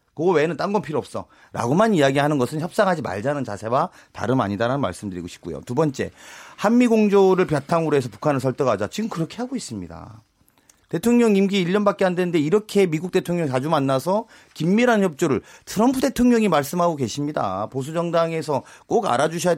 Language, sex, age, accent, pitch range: Korean, male, 40-59, native, 135-210 Hz